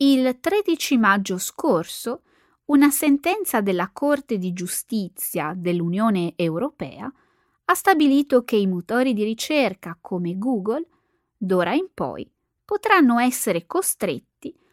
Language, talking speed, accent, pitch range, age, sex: Italian, 110 wpm, native, 185-290 Hz, 20-39, female